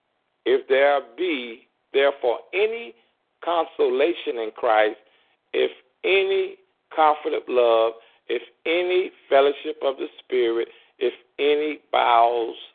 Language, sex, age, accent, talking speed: English, male, 50-69, American, 105 wpm